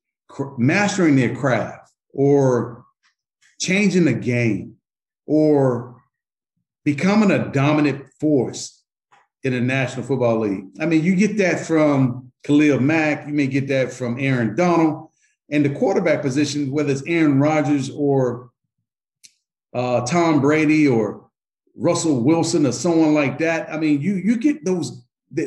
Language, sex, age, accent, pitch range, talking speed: English, male, 50-69, American, 130-165 Hz, 135 wpm